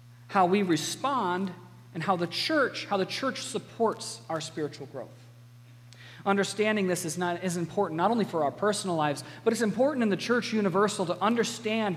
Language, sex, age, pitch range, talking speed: English, male, 40-59, 150-215 Hz, 175 wpm